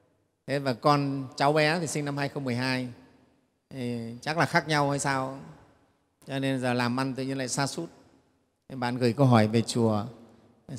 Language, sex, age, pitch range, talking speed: Vietnamese, male, 30-49, 130-165 Hz, 190 wpm